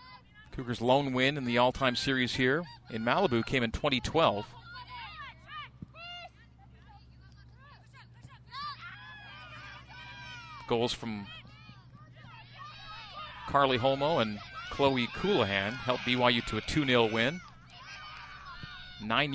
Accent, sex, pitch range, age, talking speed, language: American, male, 110-135 Hz, 40-59, 85 wpm, English